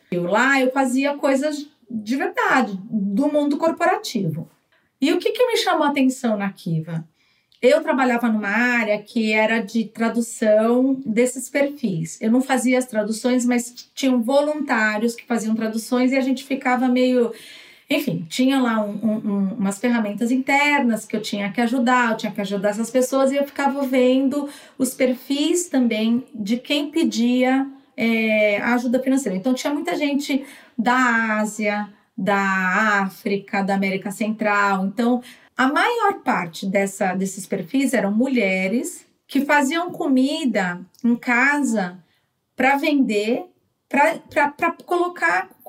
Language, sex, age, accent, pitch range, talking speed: Portuguese, female, 40-59, Brazilian, 215-280 Hz, 140 wpm